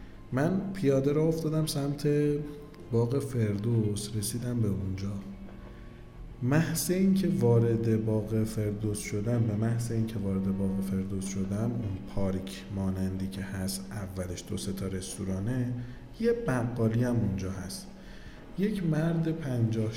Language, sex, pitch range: Persian, male, 95-125 Hz